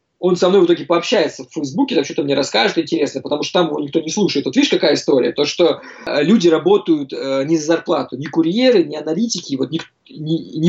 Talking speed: 215 wpm